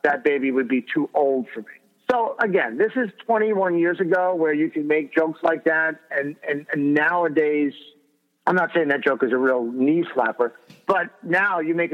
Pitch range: 150-195 Hz